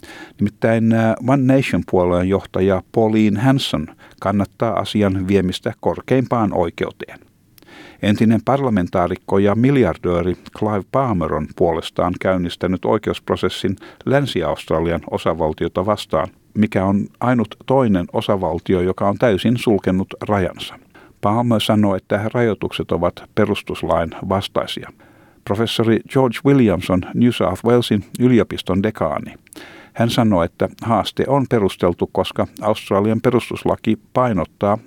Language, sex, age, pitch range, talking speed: Finnish, male, 50-69, 95-130 Hz, 100 wpm